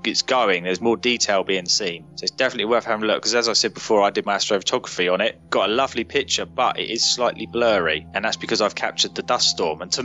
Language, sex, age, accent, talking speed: English, male, 20-39, British, 265 wpm